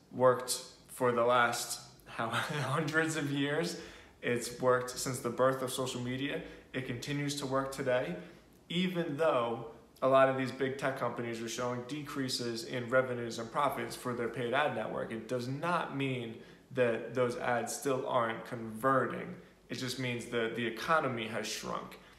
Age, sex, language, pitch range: 20-39, male, English, 120-140 Hz